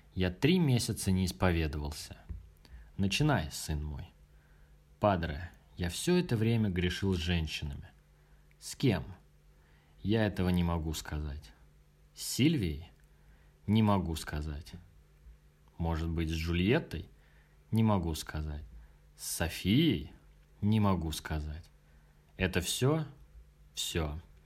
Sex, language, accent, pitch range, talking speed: male, Russian, native, 75-105 Hz, 105 wpm